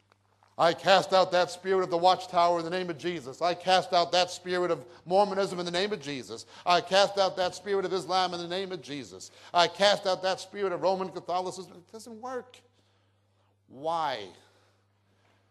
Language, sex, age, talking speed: English, male, 50-69, 190 wpm